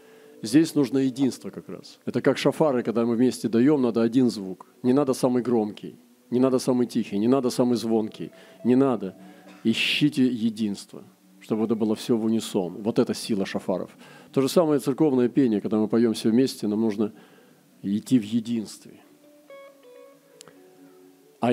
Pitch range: 115-145 Hz